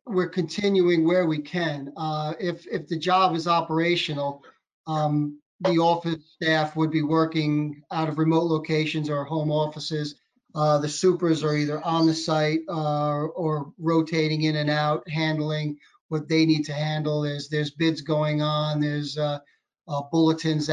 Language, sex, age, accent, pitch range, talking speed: English, male, 40-59, American, 150-170 Hz, 160 wpm